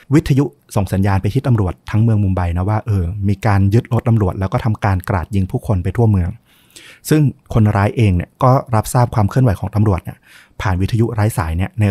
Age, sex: 20-39, male